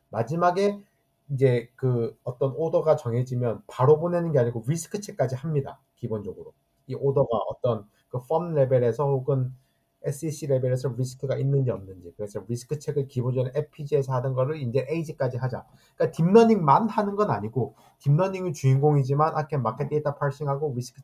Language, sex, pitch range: Korean, male, 125-160 Hz